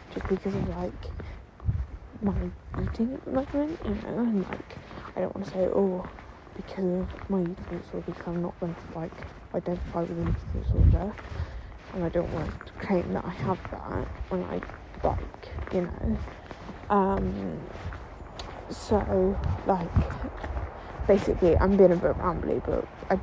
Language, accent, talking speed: English, British, 160 wpm